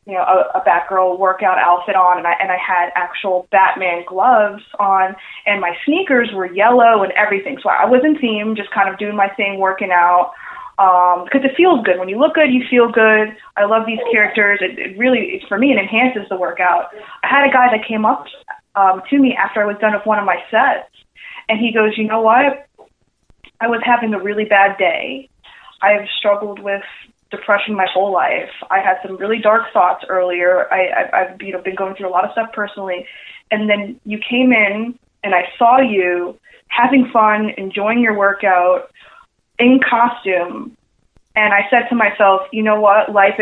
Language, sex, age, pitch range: English, female, 20-39, 190-230 Hz